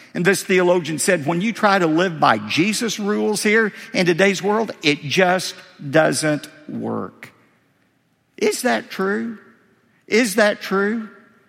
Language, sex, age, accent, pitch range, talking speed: English, male, 50-69, American, 155-225 Hz, 135 wpm